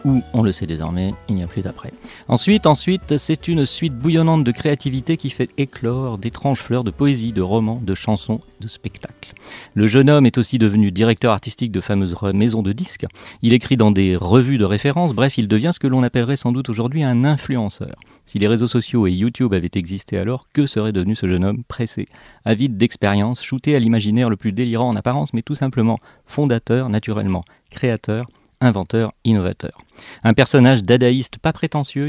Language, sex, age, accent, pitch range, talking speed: French, male, 40-59, French, 105-135 Hz, 190 wpm